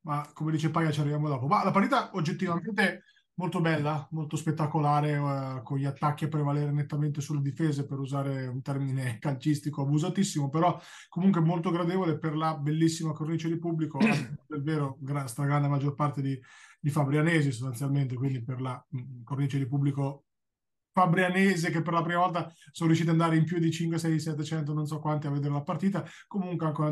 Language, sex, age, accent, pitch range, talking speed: Italian, male, 20-39, native, 140-165 Hz, 185 wpm